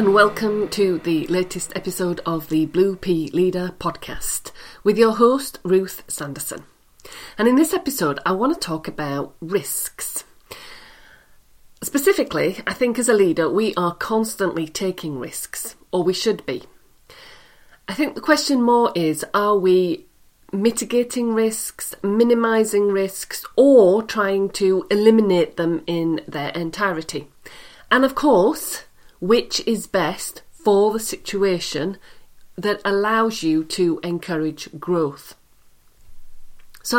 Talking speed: 125 wpm